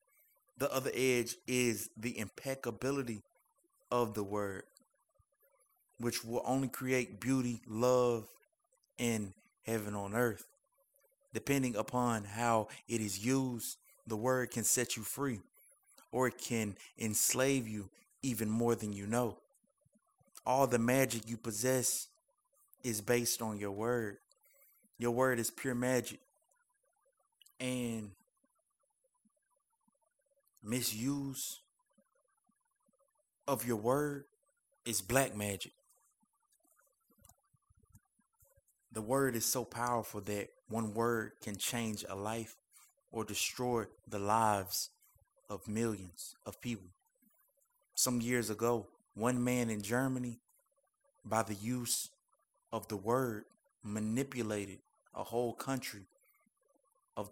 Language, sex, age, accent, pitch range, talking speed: English, male, 20-39, American, 110-135 Hz, 105 wpm